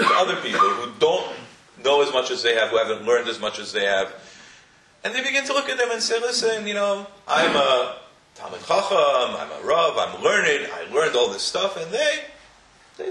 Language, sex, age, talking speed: English, male, 40-59, 215 wpm